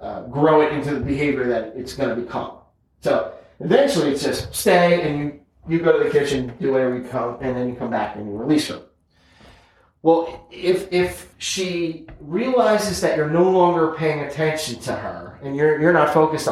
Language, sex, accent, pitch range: English, male, American, 125-160 Hz